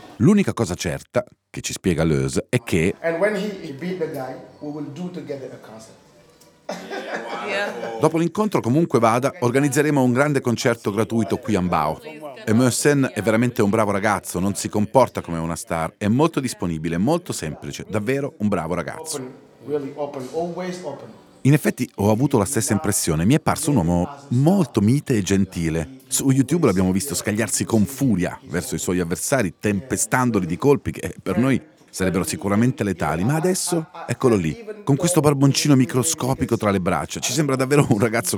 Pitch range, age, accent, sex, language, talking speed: 100-145 Hz, 40-59, native, male, Italian, 145 wpm